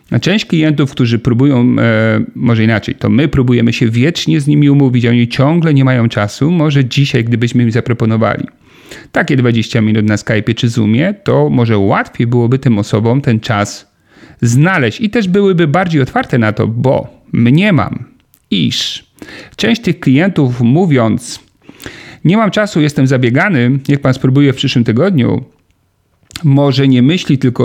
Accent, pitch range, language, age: native, 115-145 Hz, Polish, 40-59